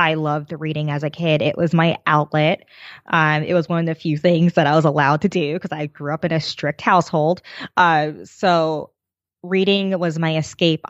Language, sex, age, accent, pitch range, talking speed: English, female, 20-39, American, 155-185 Hz, 210 wpm